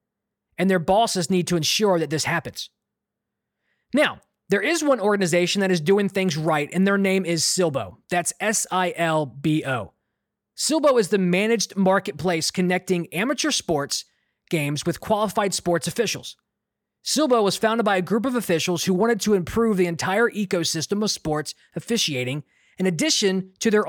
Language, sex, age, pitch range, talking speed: English, male, 20-39, 175-215 Hz, 155 wpm